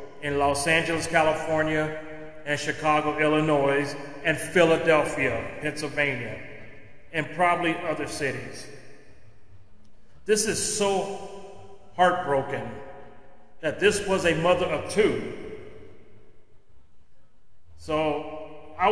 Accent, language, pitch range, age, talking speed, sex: American, English, 130-160 Hz, 40-59, 85 wpm, male